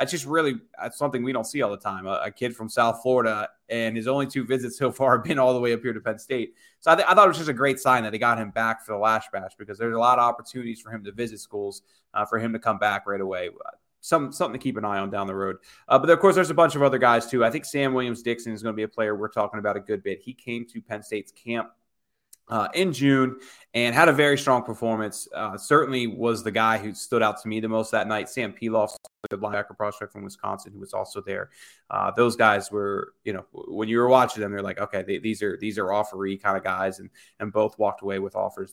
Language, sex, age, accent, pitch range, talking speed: English, male, 20-39, American, 110-130 Hz, 275 wpm